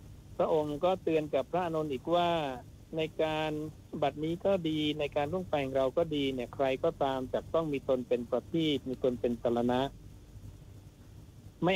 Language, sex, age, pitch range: Thai, male, 60-79, 115-145 Hz